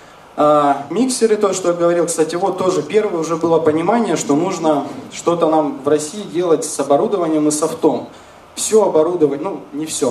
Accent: native